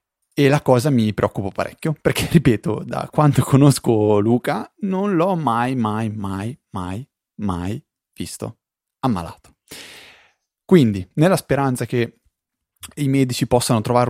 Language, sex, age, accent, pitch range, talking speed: Italian, male, 30-49, native, 105-125 Hz, 125 wpm